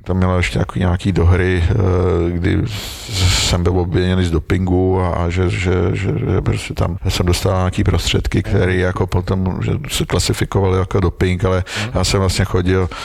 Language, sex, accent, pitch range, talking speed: Czech, male, native, 90-100 Hz, 155 wpm